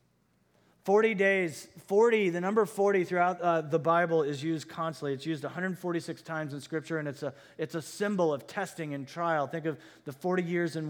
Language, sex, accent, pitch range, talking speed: English, male, American, 120-165 Hz, 175 wpm